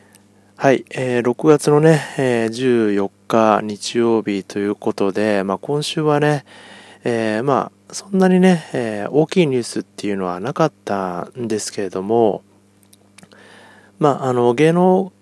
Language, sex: Japanese, male